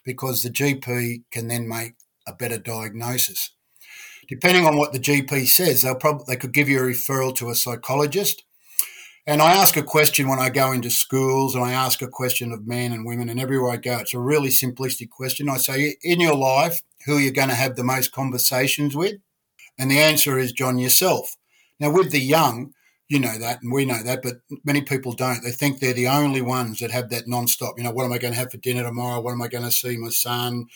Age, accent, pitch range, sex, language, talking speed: 50-69, Australian, 120-135 Hz, male, English, 230 wpm